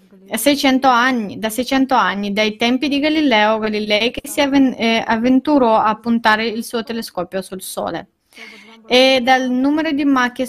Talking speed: 130 wpm